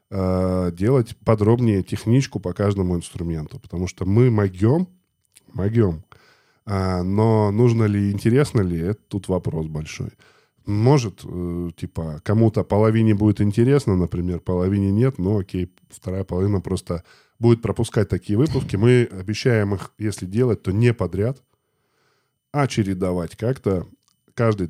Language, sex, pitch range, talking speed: Russian, male, 90-115 Hz, 120 wpm